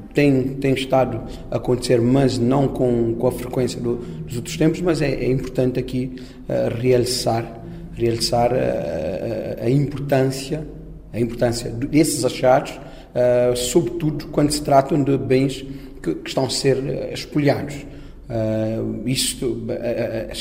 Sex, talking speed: male, 135 wpm